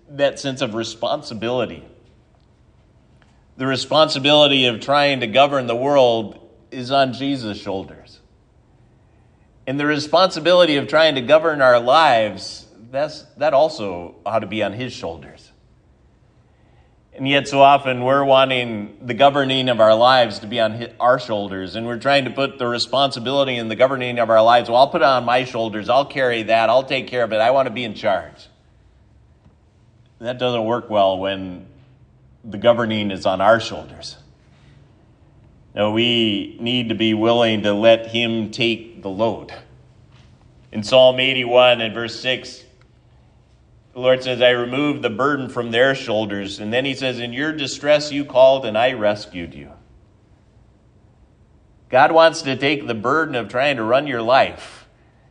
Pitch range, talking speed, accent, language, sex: 110-135 Hz, 160 wpm, American, English, male